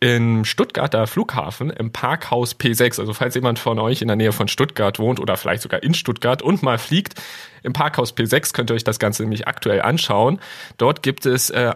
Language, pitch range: German, 115-140 Hz